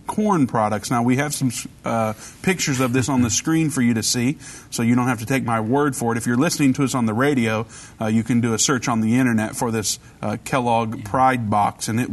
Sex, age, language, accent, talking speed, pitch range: male, 40-59, English, American, 255 wpm, 120-155 Hz